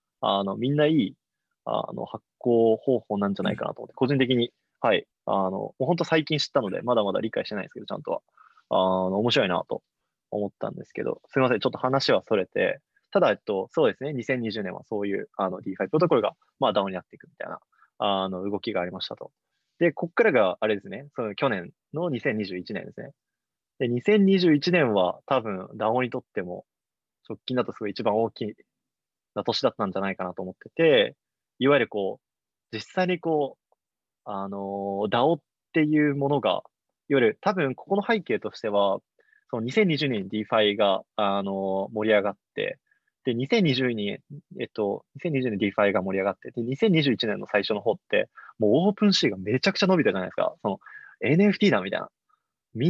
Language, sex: Japanese, male